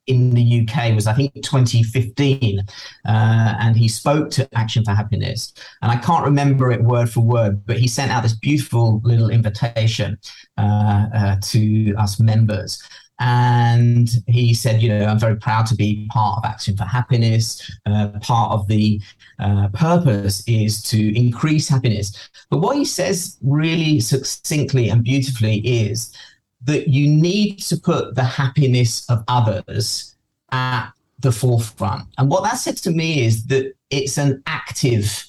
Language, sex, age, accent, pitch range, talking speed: English, male, 40-59, British, 110-140 Hz, 160 wpm